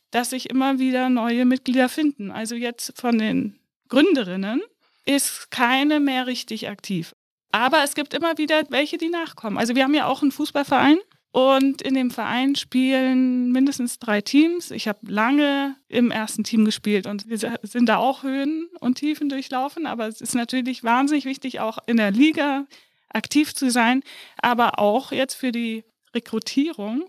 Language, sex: German, female